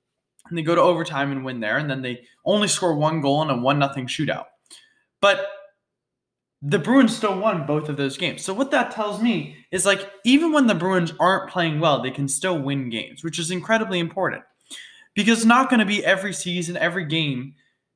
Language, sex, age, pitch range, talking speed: English, male, 20-39, 150-210 Hz, 205 wpm